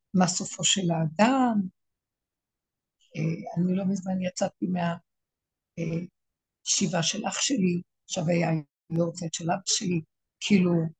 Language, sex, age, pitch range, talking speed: Hebrew, female, 60-79, 175-220 Hz, 110 wpm